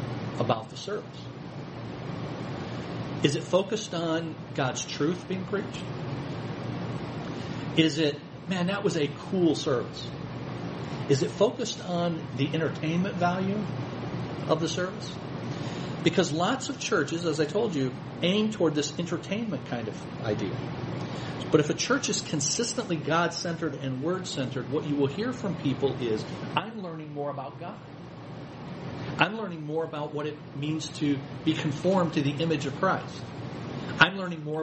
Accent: American